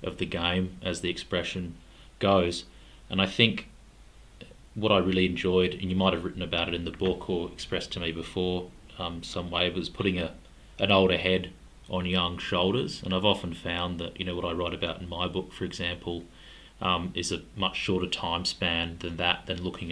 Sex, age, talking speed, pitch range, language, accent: male, 30-49, 205 wpm, 85-95 Hz, English, Australian